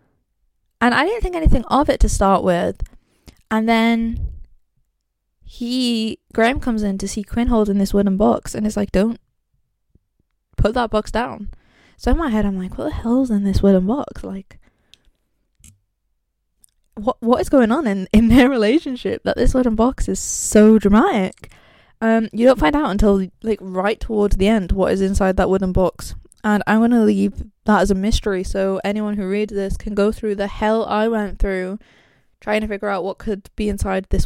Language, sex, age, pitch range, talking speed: English, female, 10-29, 195-225 Hz, 190 wpm